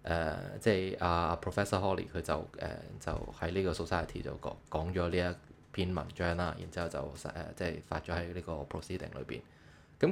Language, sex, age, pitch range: Chinese, male, 20-39, 80-95 Hz